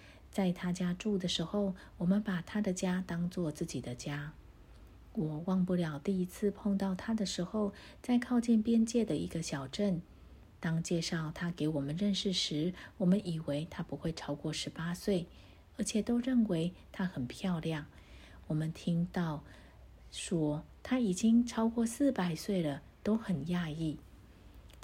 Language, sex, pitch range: Chinese, female, 155-195 Hz